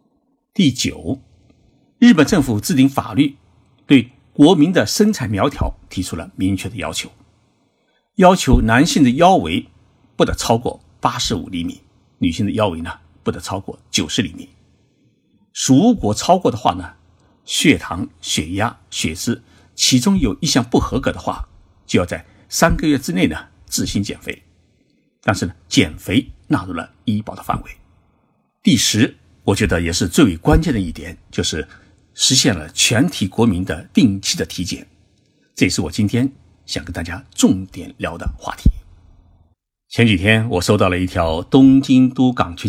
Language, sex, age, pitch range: Chinese, male, 50-69, 90-130 Hz